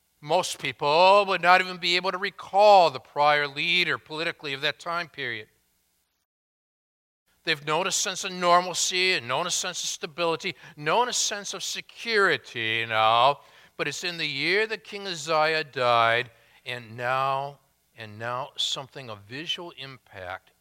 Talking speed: 150 wpm